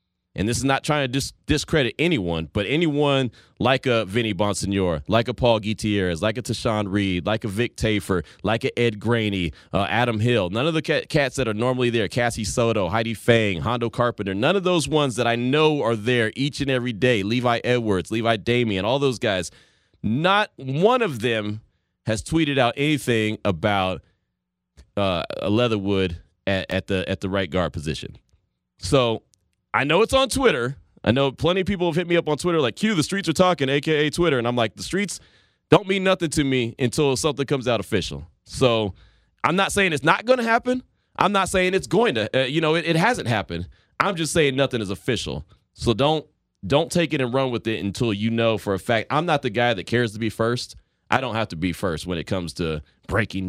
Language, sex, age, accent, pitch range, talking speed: English, male, 30-49, American, 100-145 Hz, 215 wpm